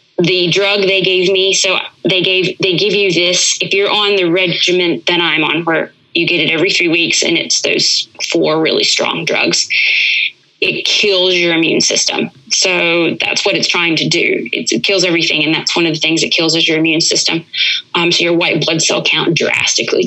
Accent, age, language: American, 20-39, English